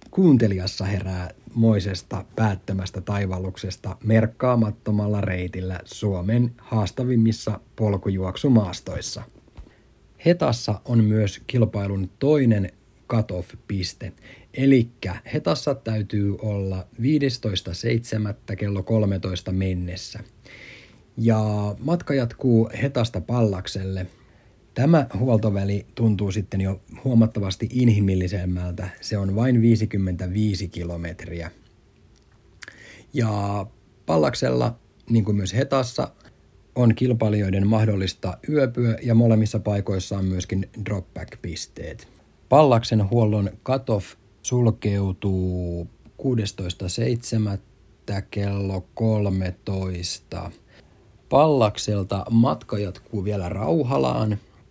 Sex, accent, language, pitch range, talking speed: male, native, Finnish, 95-115 Hz, 75 wpm